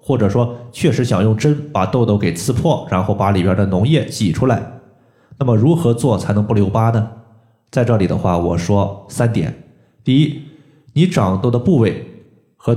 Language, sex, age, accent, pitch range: Chinese, male, 20-39, native, 100-130 Hz